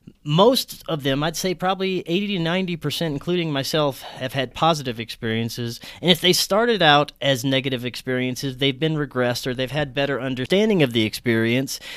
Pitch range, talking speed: 125-160 Hz, 175 wpm